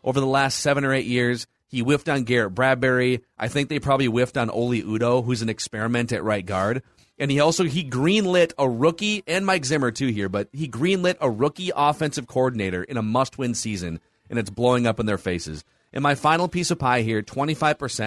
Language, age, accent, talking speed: English, 30-49, American, 210 wpm